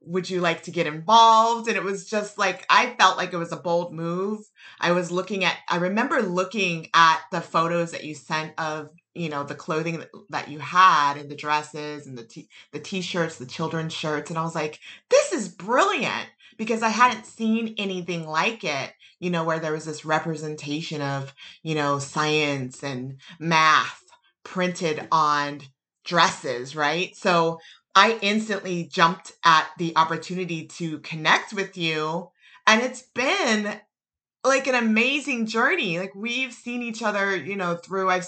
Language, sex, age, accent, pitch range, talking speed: English, female, 30-49, American, 160-190 Hz, 170 wpm